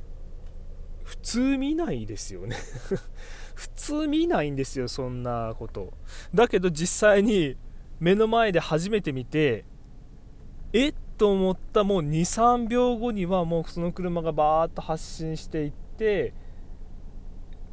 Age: 20-39